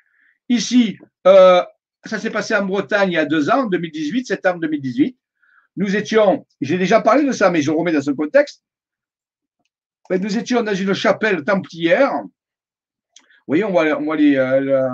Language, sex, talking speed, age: French, male, 155 wpm, 50-69